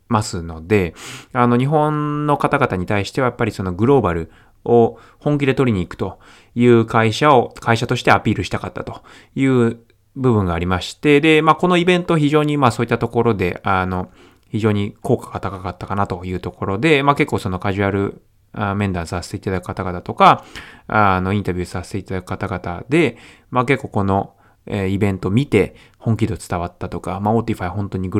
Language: Japanese